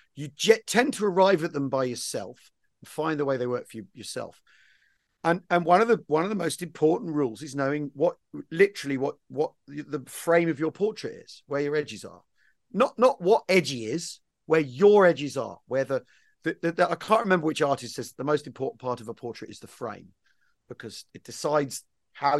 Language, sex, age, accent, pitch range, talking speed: English, male, 40-59, British, 125-170 Hz, 205 wpm